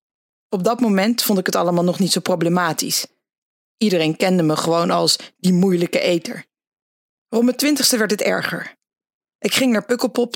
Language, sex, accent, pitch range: English, female, Dutch, 180-225 Hz